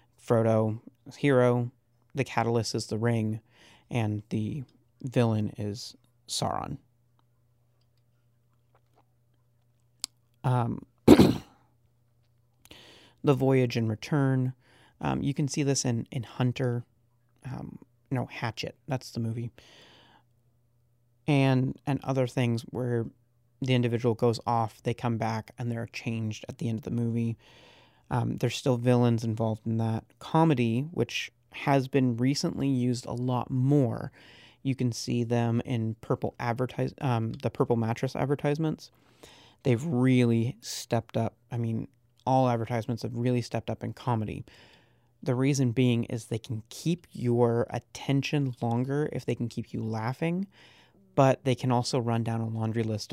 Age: 30-49